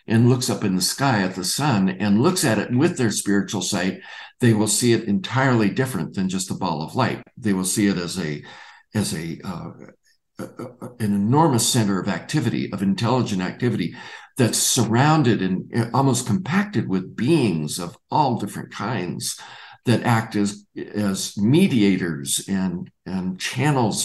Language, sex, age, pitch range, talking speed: English, male, 60-79, 95-125 Hz, 165 wpm